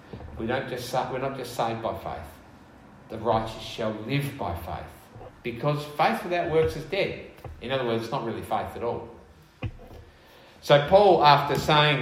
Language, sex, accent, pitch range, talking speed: English, male, Australian, 105-140 Hz, 170 wpm